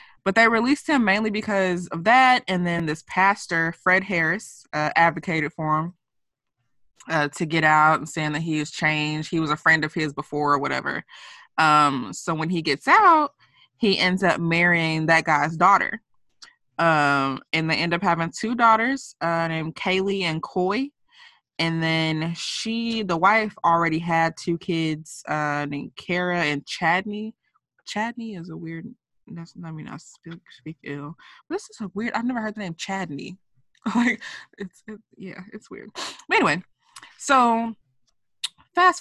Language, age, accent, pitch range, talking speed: English, 20-39, American, 160-210 Hz, 170 wpm